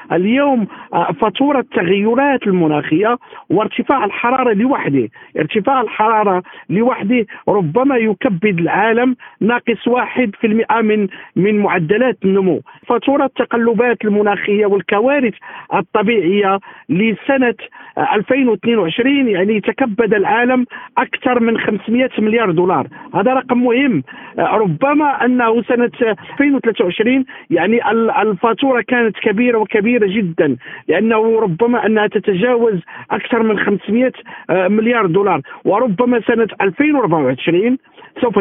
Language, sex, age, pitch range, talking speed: Arabic, male, 50-69, 205-245 Hz, 100 wpm